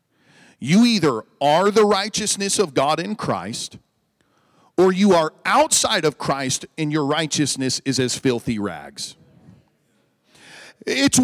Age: 40-59